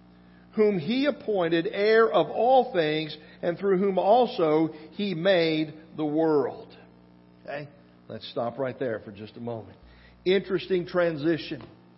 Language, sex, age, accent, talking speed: English, male, 50-69, American, 130 wpm